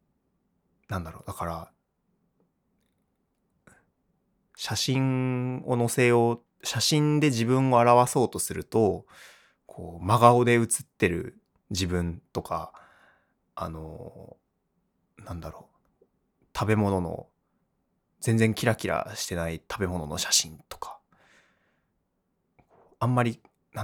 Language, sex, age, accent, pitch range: Japanese, male, 20-39, native, 90-125 Hz